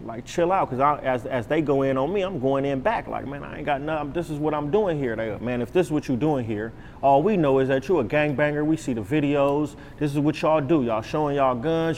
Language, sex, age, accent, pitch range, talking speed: English, male, 30-49, American, 125-150 Hz, 290 wpm